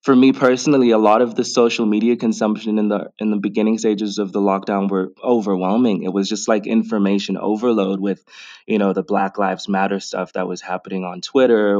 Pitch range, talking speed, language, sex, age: 95-105 Hz, 205 wpm, English, male, 20-39